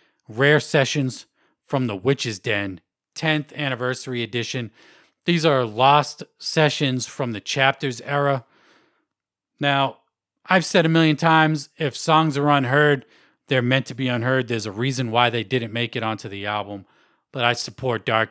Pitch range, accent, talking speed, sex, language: 115-150 Hz, American, 155 wpm, male, English